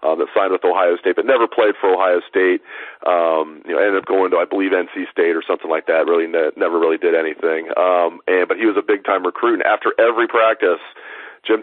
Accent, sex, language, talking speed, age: American, male, English, 245 wpm, 40-59